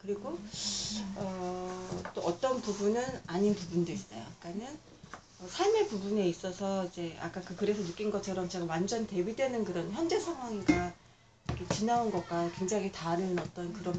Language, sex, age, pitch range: Korean, female, 40-59, 175-230 Hz